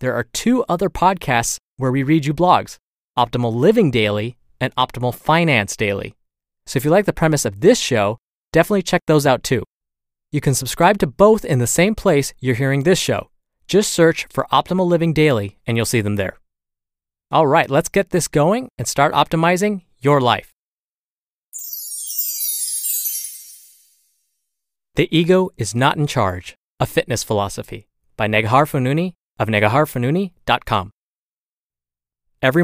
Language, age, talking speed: English, 20-39, 145 wpm